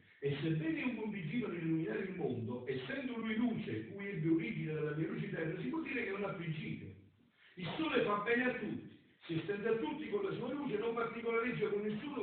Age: 50-69